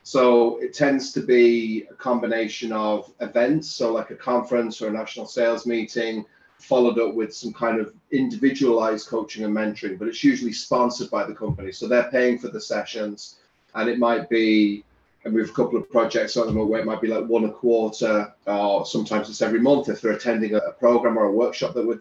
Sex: male